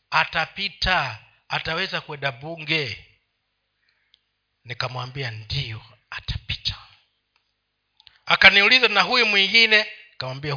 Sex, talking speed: male, 70 wpm